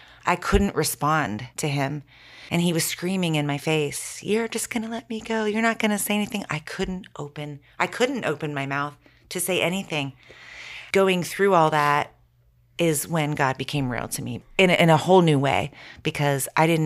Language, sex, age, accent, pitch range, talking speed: English, female, 30-49, American, 135-155 Hz, 205 wpm